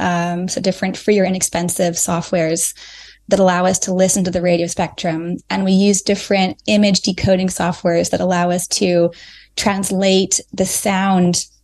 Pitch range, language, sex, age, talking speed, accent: 180-195 Hz, English, female, 20-39, 155 wpm, American